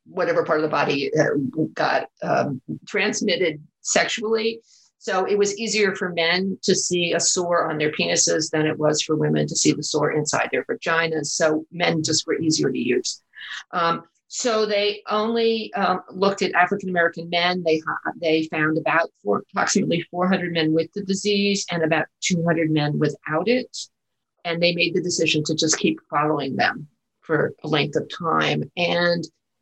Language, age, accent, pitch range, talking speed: English, 50-69, American, 155-195 Hz, 170 wpm